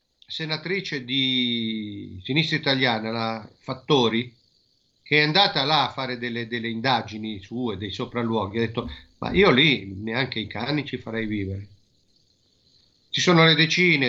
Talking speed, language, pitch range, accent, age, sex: 145 wpm, Italian, 110-155 Hz, native, 50-69, male